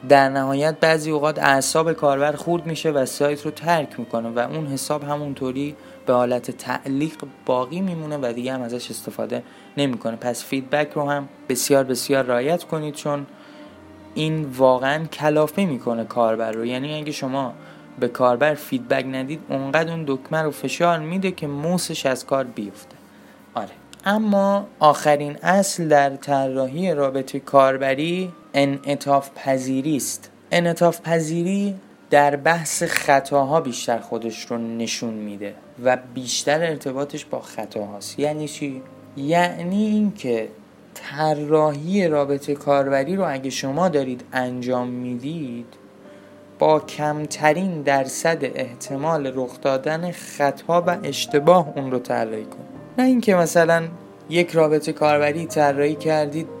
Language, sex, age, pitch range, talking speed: Persian, male, 20-39, 130-160 Hz, 125 wpm